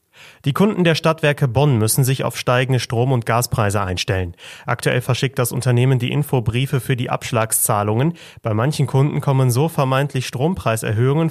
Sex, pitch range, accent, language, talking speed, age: male, 120-145 Hz, German, German, 155 wpm, 30-49